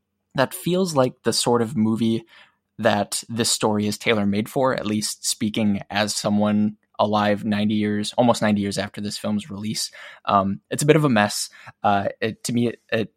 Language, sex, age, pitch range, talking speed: English, male, 20-39, 105-120 Hz, 180 wpm